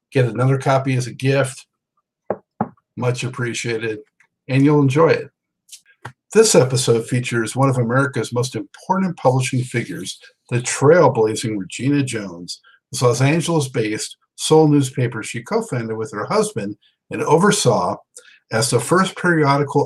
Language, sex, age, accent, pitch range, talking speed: English, male, 50-69, American, 115-145 Hz, 125 wpm